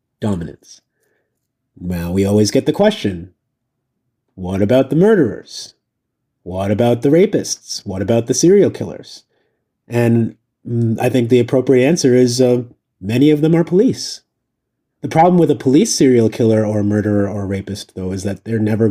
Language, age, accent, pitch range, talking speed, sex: English, 30-49, American, 110-135 Hz, 160 wpm, male